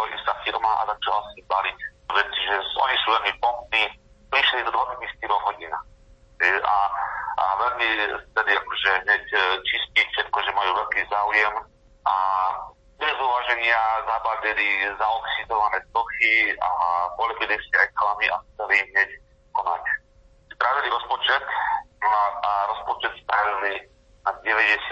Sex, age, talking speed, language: male, 40-59, 120 wpm, Slovak